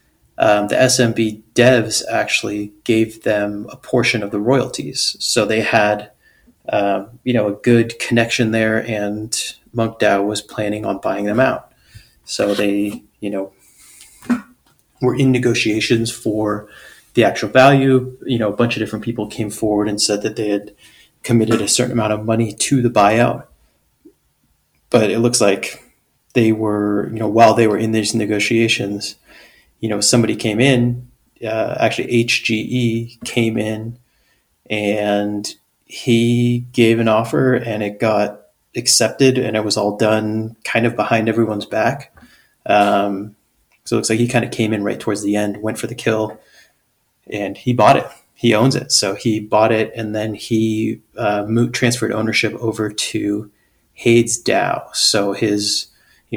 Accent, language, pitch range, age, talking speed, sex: American, English, 105-120 Hz, 30-49, 160 wpm, male